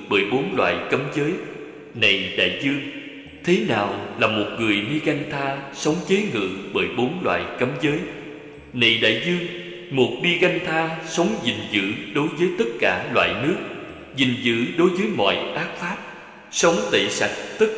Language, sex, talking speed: Vietnamese, male, 170 wpm